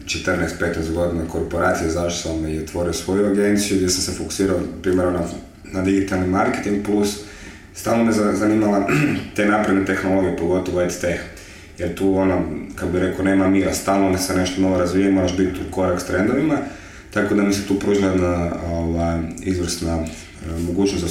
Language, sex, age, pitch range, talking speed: English, male, 30-49, 85-95 Hz, 155 wpm